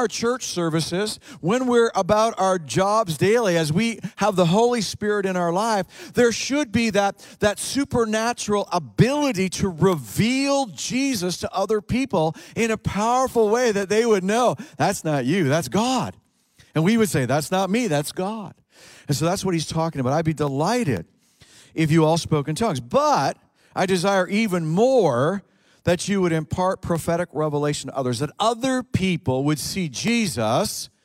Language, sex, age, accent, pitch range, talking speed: English, male, 50-69, American, 150-200 Hz, 170 wpm